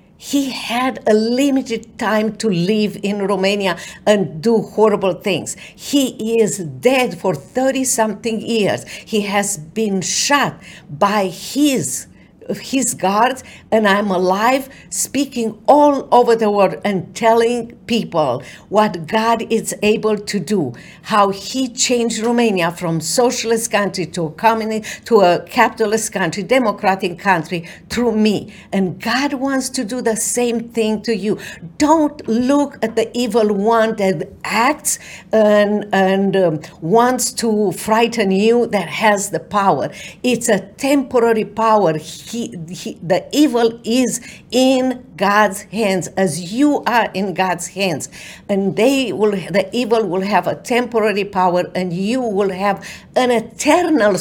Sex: female